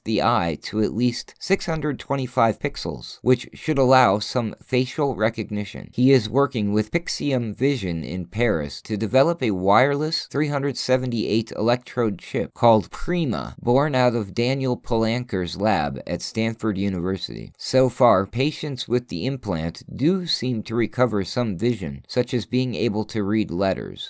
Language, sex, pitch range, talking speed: English, male, 105-130 Hz, 145 wpm